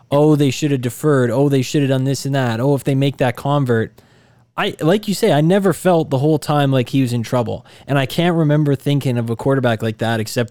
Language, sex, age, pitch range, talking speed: English, male, 20-39, 115-145 Hz, 255 wpm